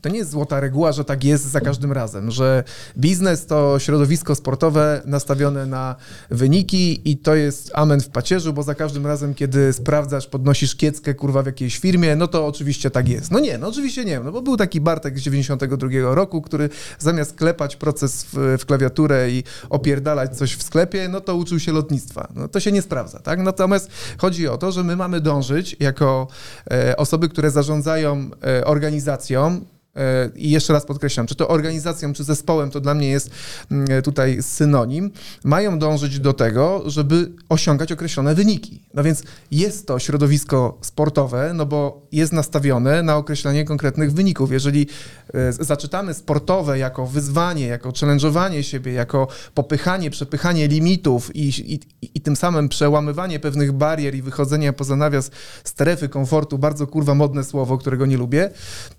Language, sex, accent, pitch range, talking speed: Polish, male, native, 140-160 Hz, 165 wpm